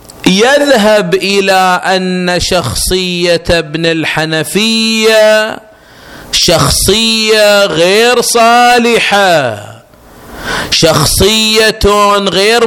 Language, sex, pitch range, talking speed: Arabic, male, 160-235 Hz, 50 wpm